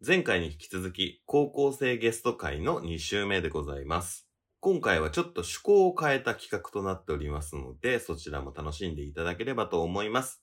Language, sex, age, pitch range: Japanese, male, 20-39, 85-125 Hz